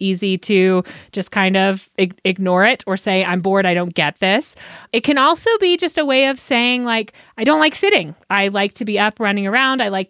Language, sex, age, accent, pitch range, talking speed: English, female, 30-49, American, 200-265 Hz, 225 wpm